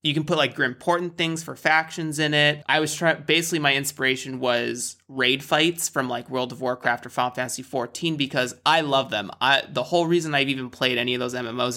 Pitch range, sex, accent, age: 125-160 Hz, male, American, 30-49